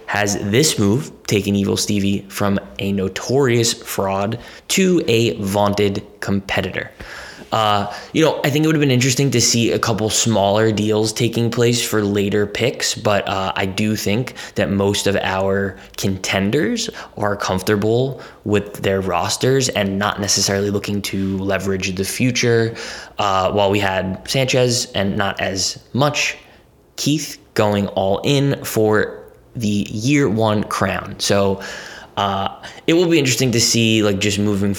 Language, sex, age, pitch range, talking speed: English, male, 20-39, 95-110 Hz, 150 wpm